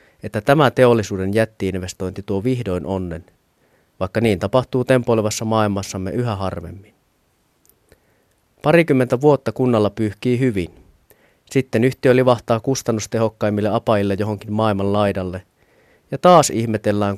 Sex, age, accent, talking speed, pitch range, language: male, 30-49, native, 105 wpm, 100-120 Hz, Finnish